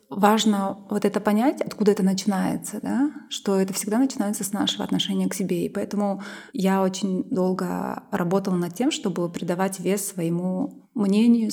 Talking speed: 155 wpm